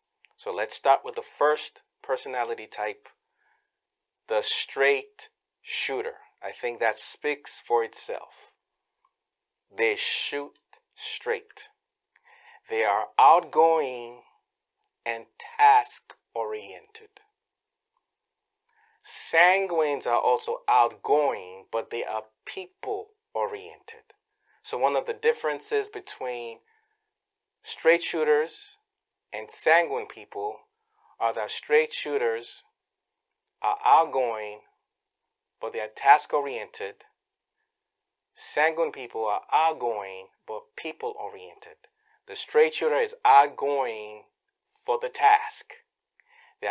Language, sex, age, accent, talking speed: English, male, 30-49, American, 90 wpm